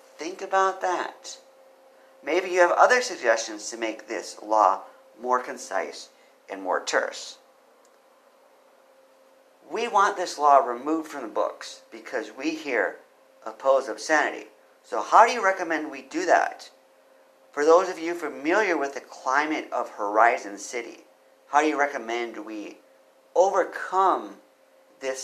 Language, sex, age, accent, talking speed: English, male, 50-69, American, 135 wpm